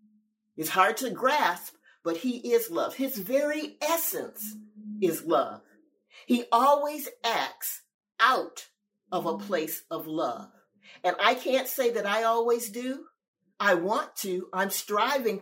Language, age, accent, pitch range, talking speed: English, 50-69, American, 175-255 Hz, 135 wpm